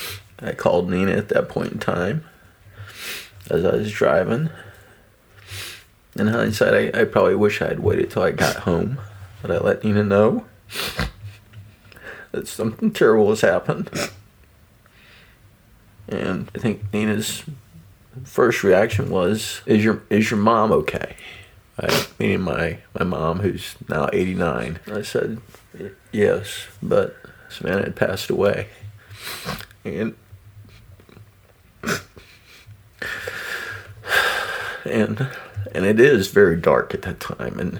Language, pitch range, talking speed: English, 95-105 Hz, 120 wpm